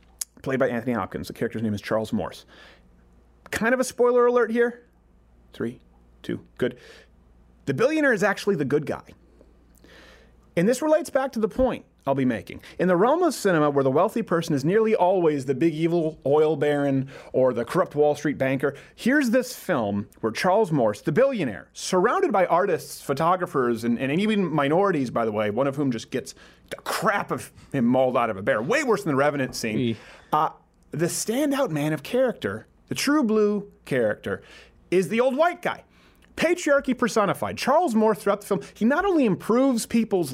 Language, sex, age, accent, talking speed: English, male, 30-49, American, 185 wpm